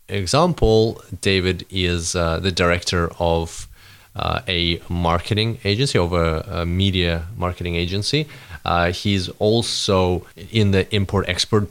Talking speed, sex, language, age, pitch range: 120 wpm, male, English, 20-39, 90-110 Hz